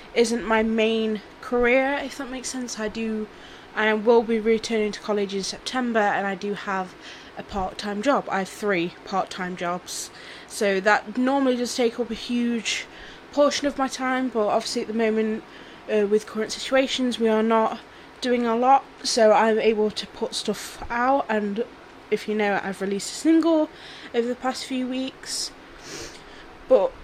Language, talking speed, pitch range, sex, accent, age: English, 175 wpm, 205-250 Hz, female, British, 10-29